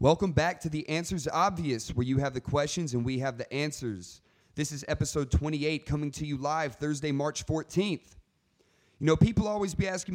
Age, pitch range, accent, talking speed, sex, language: 30-49, 150-210 Hz, American, 195 wpm, male, English